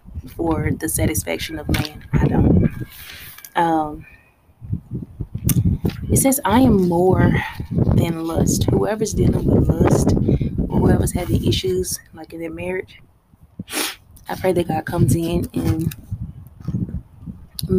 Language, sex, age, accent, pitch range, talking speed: English, female, 20-39, American, 150-190 Hz, 115 wpm